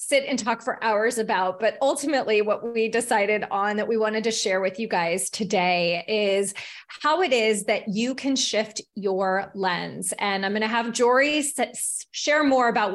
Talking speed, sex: 185 wpm, female